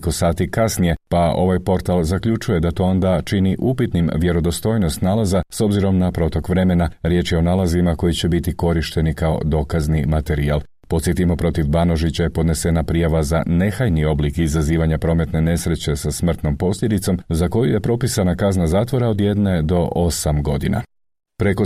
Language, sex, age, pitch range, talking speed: Croatian, male, 40-59, 85-100 Hz, 160 wpm